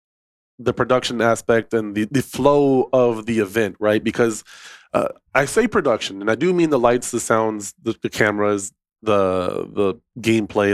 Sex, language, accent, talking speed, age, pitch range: male, English, American, 170 wpm, 20-39, 110-135 Hz